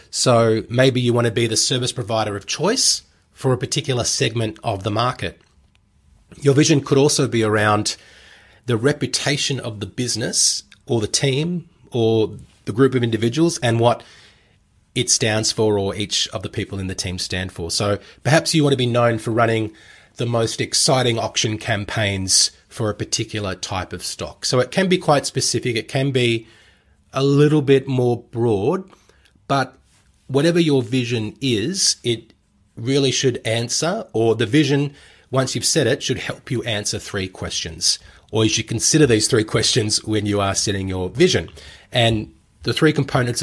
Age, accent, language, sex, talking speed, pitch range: 30-49, Australian, English, male, 175 wpm, 105-130 Hz